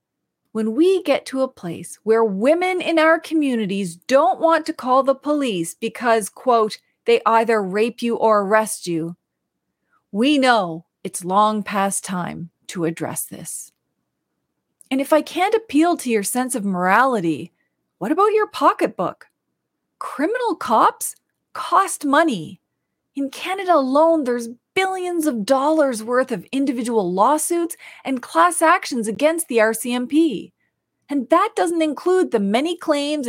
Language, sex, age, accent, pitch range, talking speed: English, female, 30-49, American, 205-310 Hz, 140 wpm